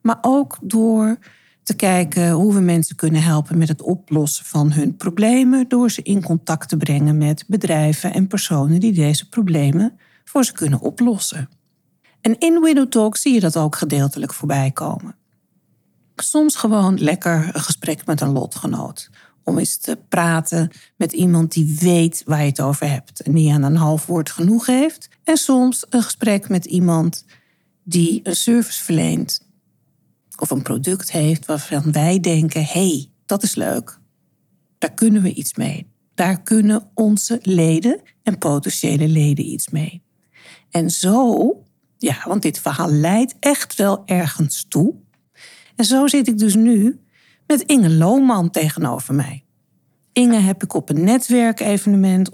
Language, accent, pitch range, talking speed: Dutch, Dutch, 160-225 Hz, 155 wpm